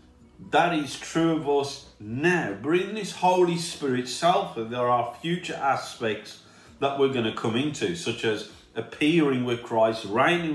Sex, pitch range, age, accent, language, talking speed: male, 120-155 Hz, 40-59, British, English, 160 wpm